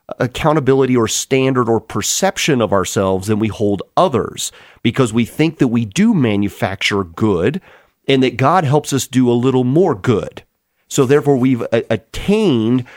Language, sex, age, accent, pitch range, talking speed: English, male, 40-59, American, 110-155 Hz, 155 wpm